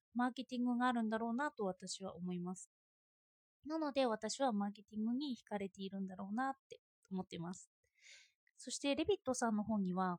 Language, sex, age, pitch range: Japanese, female, 20-39, 205-290 Hz